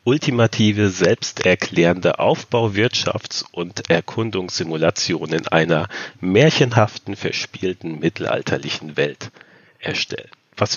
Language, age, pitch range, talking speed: German, 40-59, 90-110 Hz, 70 wpm